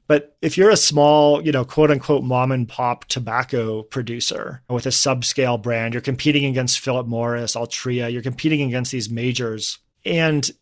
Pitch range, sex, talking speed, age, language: 120-140 Hz, male, 170 wpm, 30-49, English